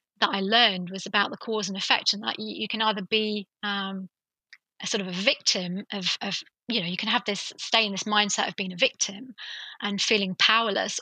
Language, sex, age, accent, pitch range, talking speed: English, female, 30-49, British, 195-230 Hz, 225 wpm